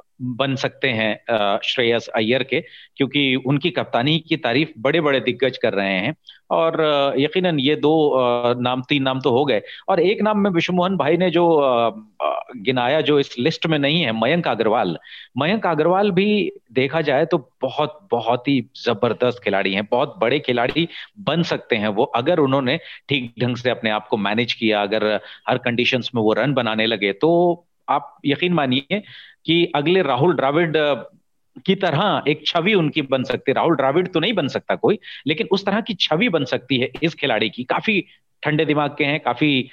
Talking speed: 185 wpm